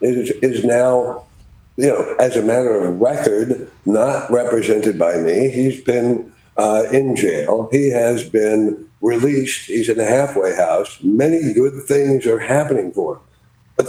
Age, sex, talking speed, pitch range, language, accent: 60-79, male, 155 wpm, 115-140 Hz, English, American